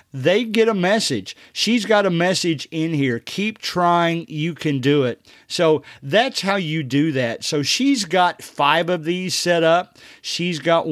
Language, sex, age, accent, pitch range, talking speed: English, male, 50-69, American, 135-170 Hz, 175 wpm